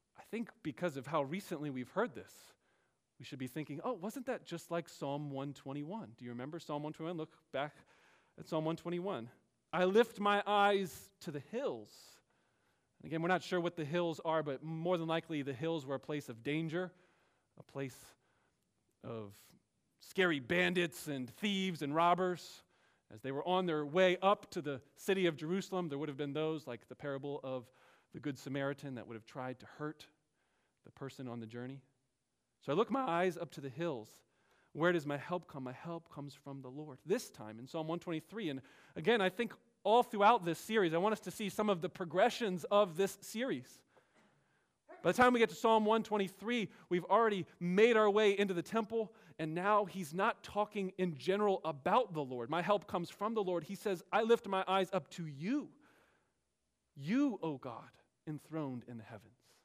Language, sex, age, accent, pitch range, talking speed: English, male, 40-59, American, 145-195 Hz, 190 wpm